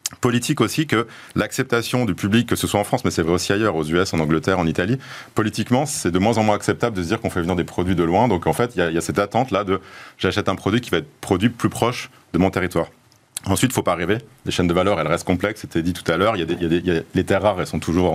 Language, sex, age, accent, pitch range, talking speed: French, male, 30-49, French, 90-115 Hz, 295 wpm